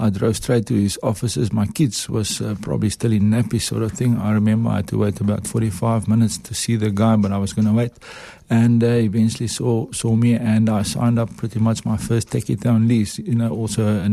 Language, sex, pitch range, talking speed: English, male, 105-120 Hz, 245 wpm